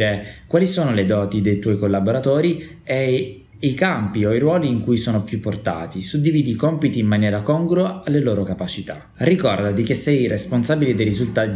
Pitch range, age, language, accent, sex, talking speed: 100-130 Hz, 20-39, Italian, native, male, 170 wpm